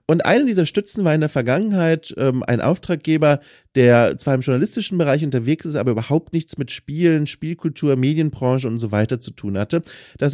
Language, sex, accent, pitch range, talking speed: German, male, German, 125-165 Hz, 185 wpm